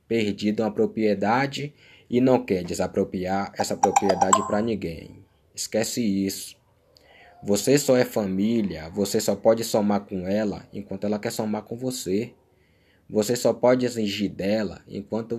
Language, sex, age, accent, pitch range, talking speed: Portuguese, male, 20-39, Brazilian, 100-130 Hz, 135 wpm